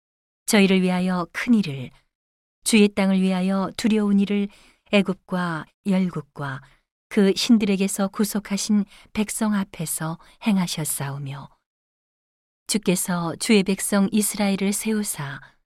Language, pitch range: Korean, 165-205 Hz